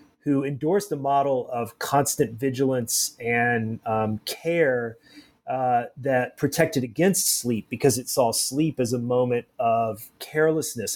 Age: 30-49